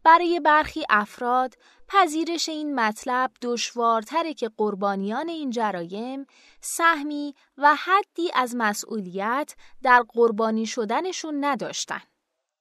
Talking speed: 95 wpm